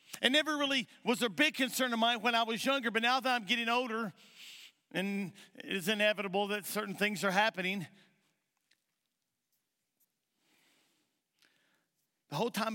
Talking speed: 140 wpm